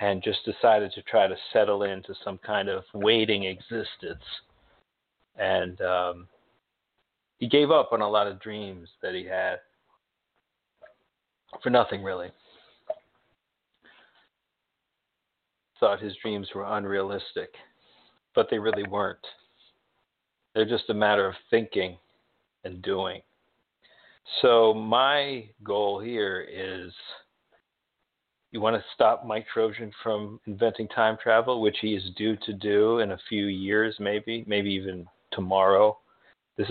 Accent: American